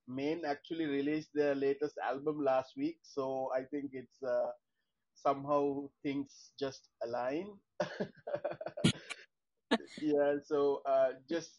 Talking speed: 110 wpm